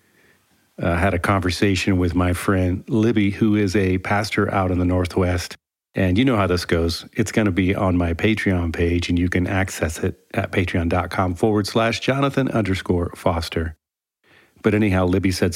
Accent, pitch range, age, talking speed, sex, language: American, 90-105 Hz, 40-59, 180 wpm, male, English